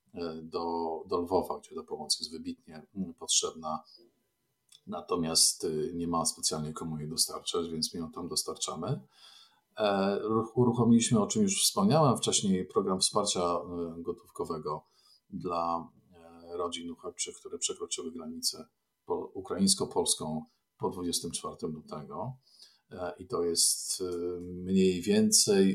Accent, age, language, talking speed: native, 50-69, Polish, 105 wpm